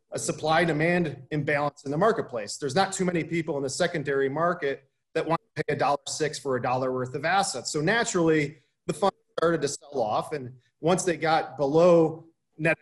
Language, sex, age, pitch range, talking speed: English, male, 30-49, 140-165 Hz, 195 wpm